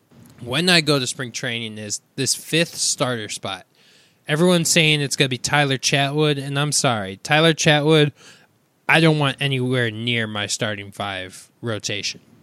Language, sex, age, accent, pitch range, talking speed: English, male, 20-39, American, 120-150 Hz, 160 wpm